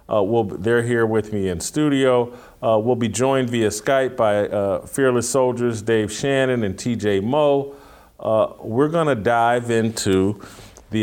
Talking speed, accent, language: 145 wpm, American, English